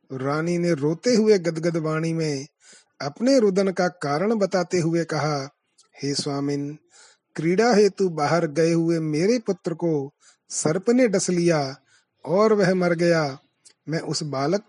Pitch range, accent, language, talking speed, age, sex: 150-195 Hz, native, Hindi, 145 wpm, 30-49, male